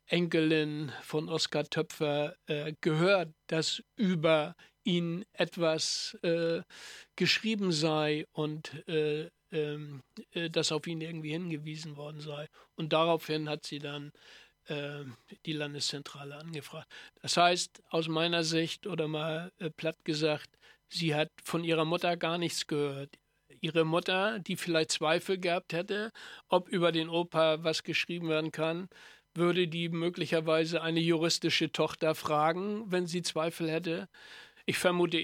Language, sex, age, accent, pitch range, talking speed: German, male, 60-79, German, 150-170 Hz, 135 wpm